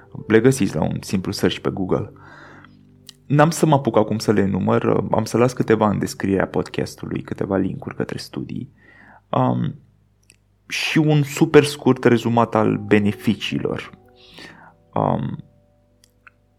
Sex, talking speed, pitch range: male, 130 wpm, 95-120 Hz